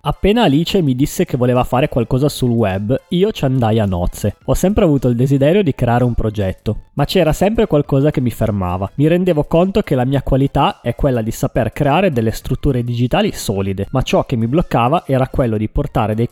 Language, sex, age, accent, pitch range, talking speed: Italian, male, 20-39, native, 115-150 Hz, 210 wpm